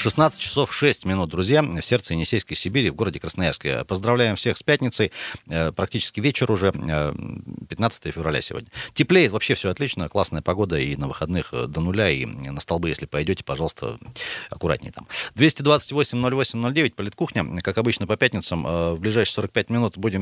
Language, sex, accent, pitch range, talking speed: Russian, male, native, 95-140 Hz, 155 wpm